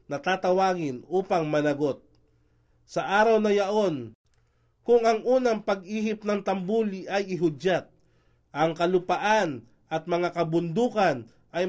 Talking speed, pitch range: 115 wpm, 155-215 Hz